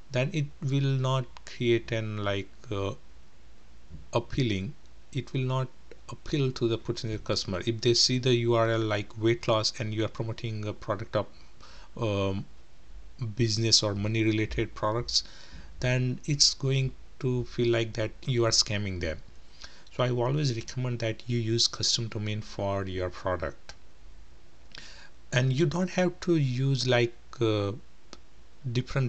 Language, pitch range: English, 105-130 Hz